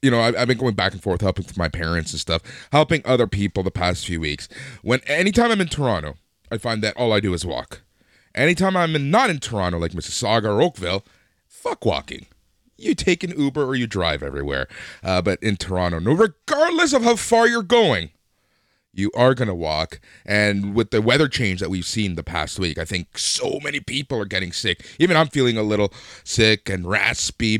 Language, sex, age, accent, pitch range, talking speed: English, male, 30-49, American, 95-135 Hz, 205 wpm